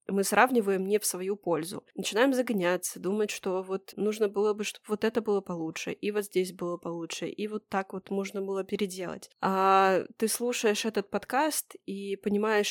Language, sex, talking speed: Russian, female, 180 wpm